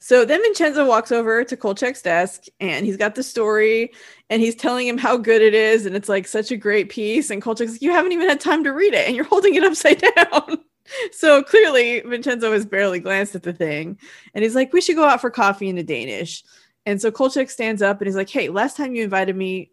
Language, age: English, 20-39